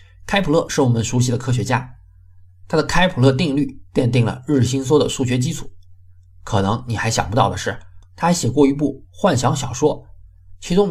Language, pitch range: Chinese, 100-140 Hz